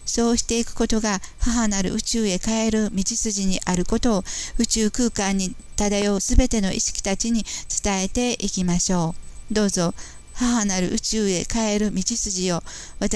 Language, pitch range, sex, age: Japanese, 185-220 Hz, female, 50-69